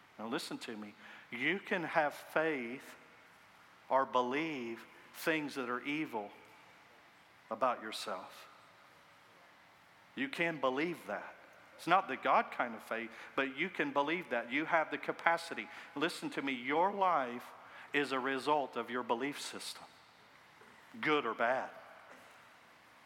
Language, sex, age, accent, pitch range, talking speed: English, male, 50-69, American, 125-150 Hz, 135 wpm